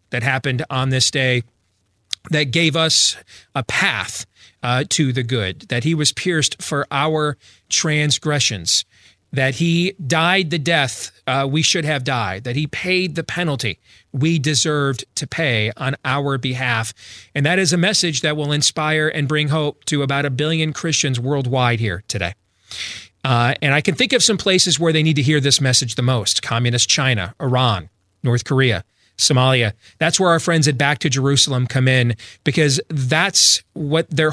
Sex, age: male, 40-59